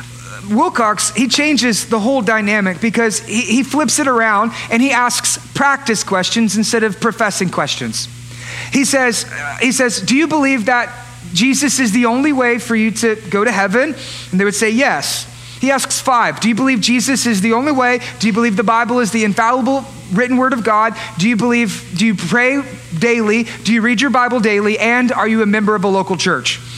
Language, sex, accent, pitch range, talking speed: English, male, American, 205-245 Hz, 200 wpm